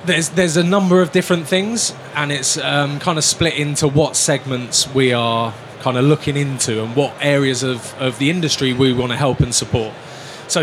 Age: 20-39